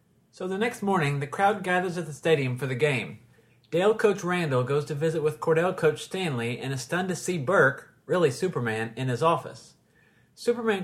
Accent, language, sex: American, English, male